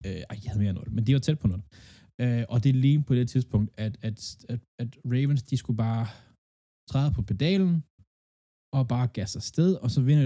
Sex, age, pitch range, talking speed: male, 20-39, 100-130 Hz, 215 wpm